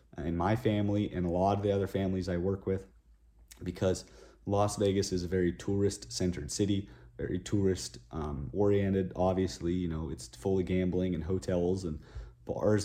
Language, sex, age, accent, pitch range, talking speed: English, male, 30-49, American, 90-105 Hz, 160 wpm